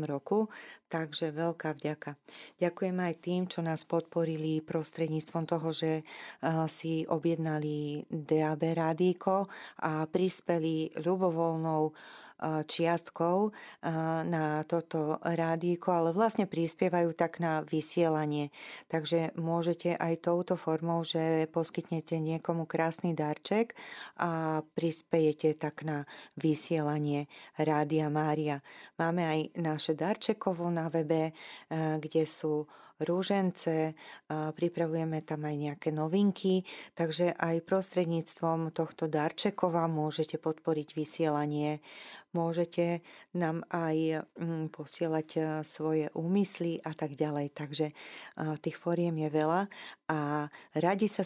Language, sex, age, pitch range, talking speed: Slovak, female, 30-49, 155-170 Hz, 100 wpm